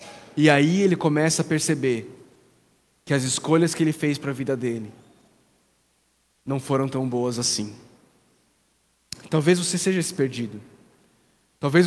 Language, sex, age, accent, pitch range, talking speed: Portuguese, male, 20-39, Brazilian, 135-170 Hz, 135 wpm